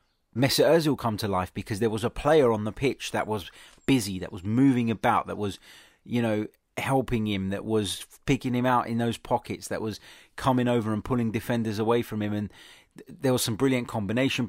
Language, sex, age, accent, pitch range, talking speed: English, male, 30-49, British, 105-130 Hz, 210 wpm